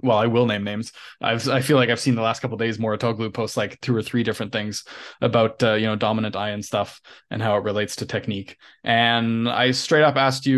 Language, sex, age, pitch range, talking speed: English, male, 20-39, 110-125 Hz, 250 wpm